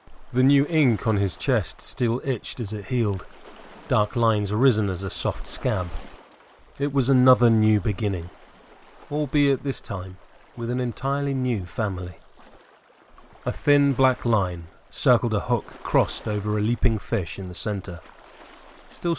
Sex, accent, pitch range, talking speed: male, British, 95-125 Hz, 145 wpm